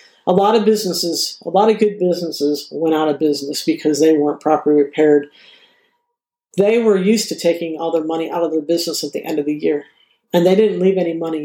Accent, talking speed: American, 220 wpm